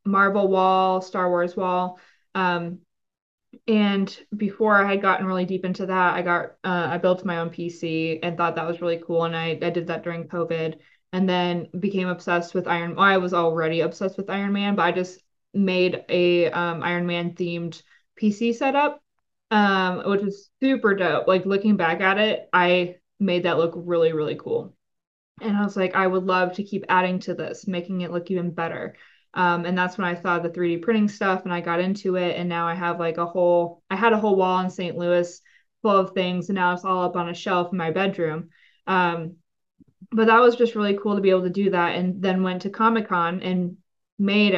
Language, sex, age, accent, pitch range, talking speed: English, female, 20-39, American, 170-195 Hz, 215 wpm